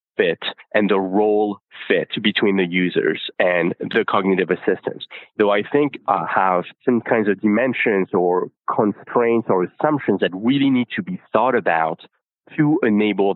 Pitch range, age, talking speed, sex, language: 95-125 Hz, 30-49, 155 wpm, male, English